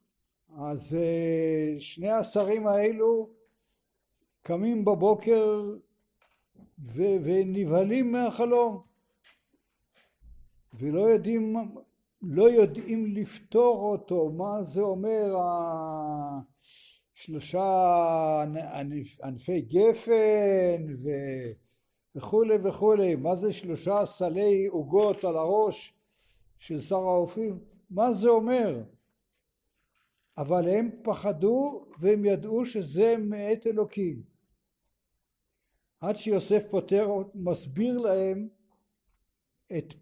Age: 60-79